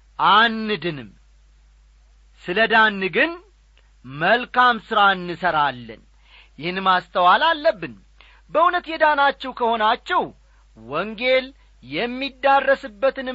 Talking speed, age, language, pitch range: 60 wpm, 40-59, Amharic, 160-235 Hz